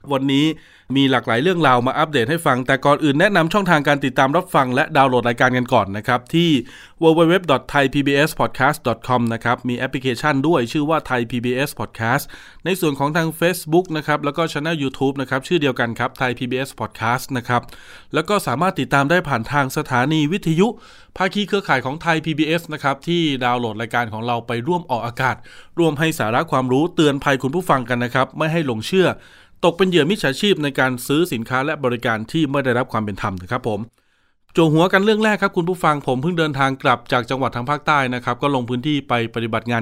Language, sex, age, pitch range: Thai, male, 20-39, 125-160 Hz